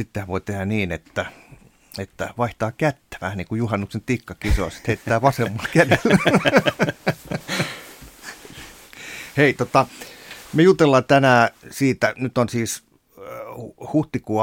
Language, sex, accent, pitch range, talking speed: Finnish, male, native, 90-115 Hz, 110 wpm